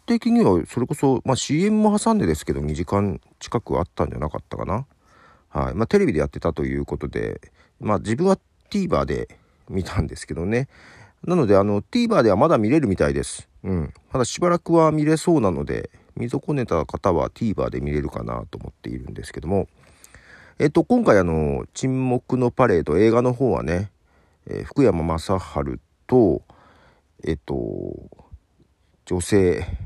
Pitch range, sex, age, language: 80-130 Hz, male, 40-59, Japanese